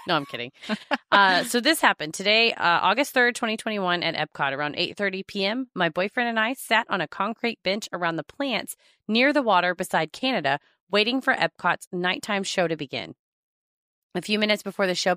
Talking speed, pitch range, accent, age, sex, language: 185 wpm, 170-235 Hz, American, 30-49, female, English